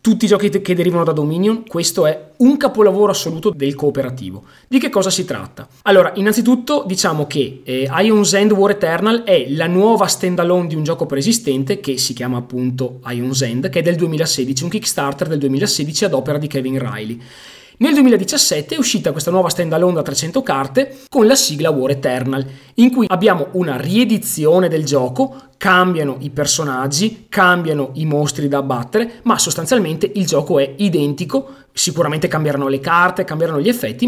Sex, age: male, 20-39